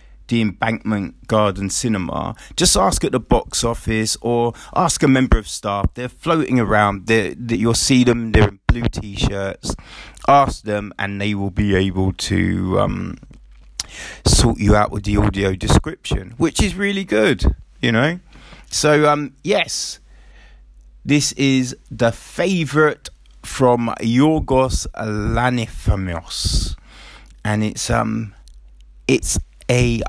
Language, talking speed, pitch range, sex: English, 130 wpm, 100-125 Hz, male